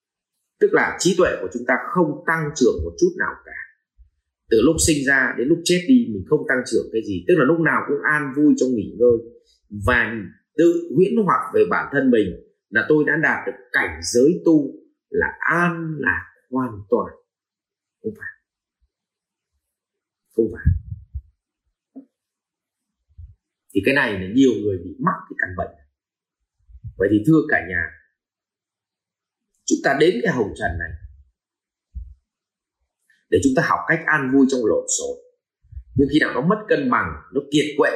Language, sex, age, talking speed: Vietnamese, male, 30-49, 170 wpm